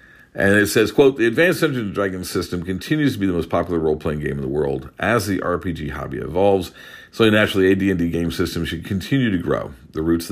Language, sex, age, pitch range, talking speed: English, male, 50-69, 80-95 Hz, 235 wpm